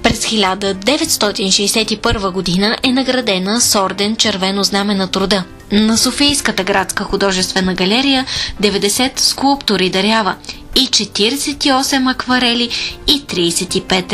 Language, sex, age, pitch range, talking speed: Bulgarian, female, 20-39, 190-240 Hz, 100 wpm